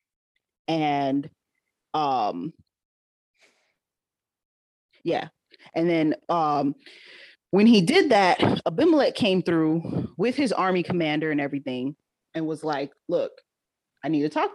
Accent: American